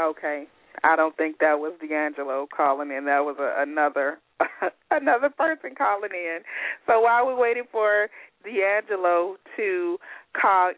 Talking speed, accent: 135 wpm, American